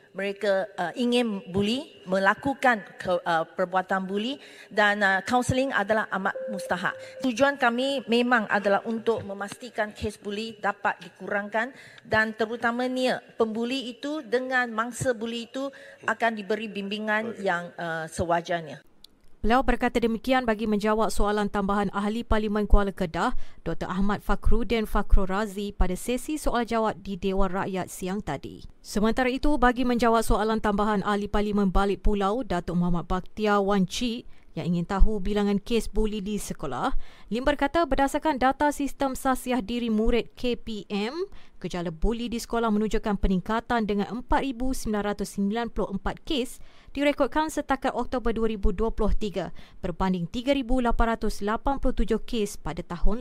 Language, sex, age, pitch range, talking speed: Malay, female, 30-49, 200-245 Hz, 120 wpm